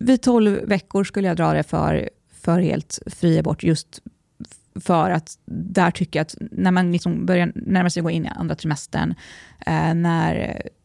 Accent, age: native, 20-39